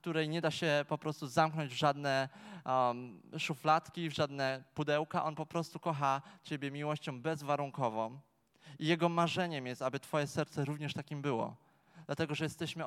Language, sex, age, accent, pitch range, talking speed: Polish, male, 20-39, native, 130-160 Hz, 160 wpm